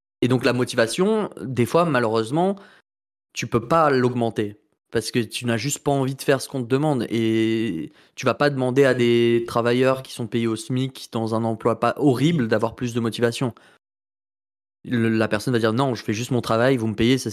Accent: French